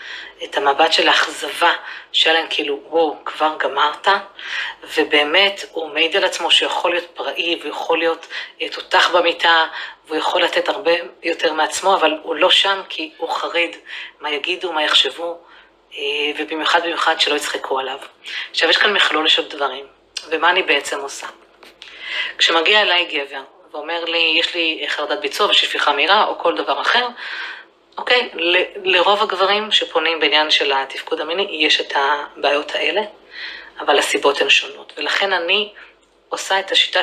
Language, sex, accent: Hebrew, female, native